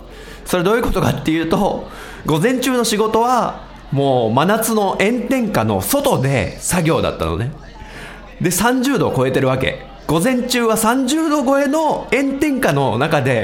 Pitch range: 150-240 Hz